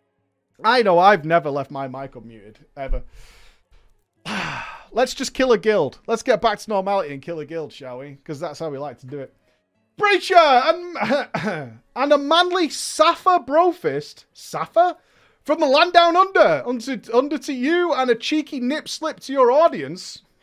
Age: 30-49